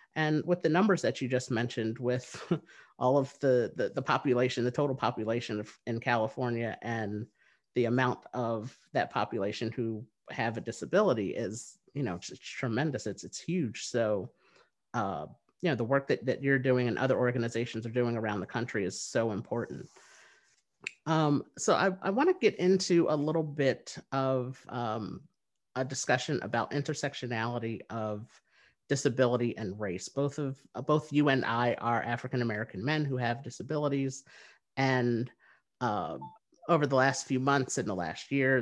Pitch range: 115-140 Hz